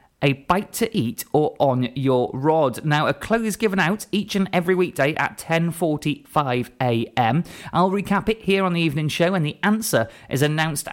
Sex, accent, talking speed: male, British, 175 wpm